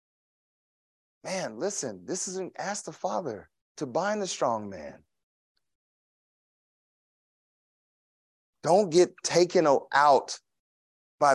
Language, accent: English, American